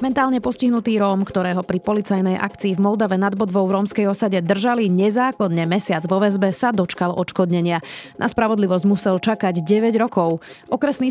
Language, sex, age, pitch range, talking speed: Slovak, female, 30-49, 180-230 Hz, 155 wpm